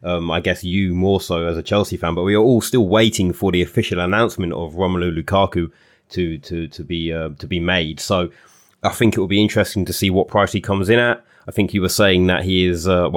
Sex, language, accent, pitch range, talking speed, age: male, English, British, 85-100 Hz, 250 wpm, 20-39